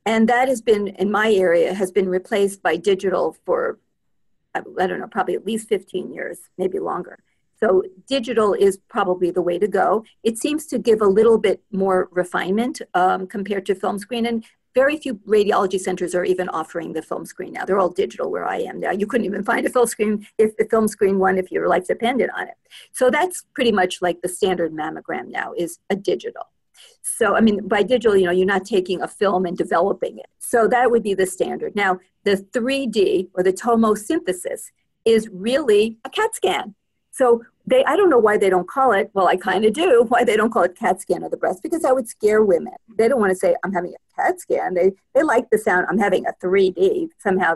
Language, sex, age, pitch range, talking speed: English, female, 50-69, 185-250 Hz, 225 wpm